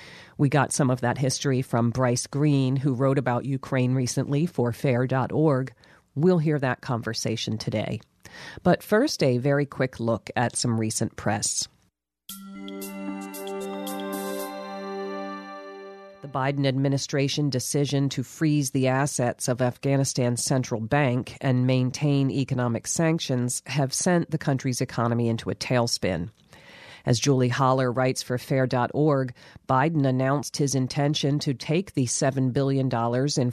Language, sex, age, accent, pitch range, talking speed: English, female, 40-59, American, 120-145 Hz, 125 wpm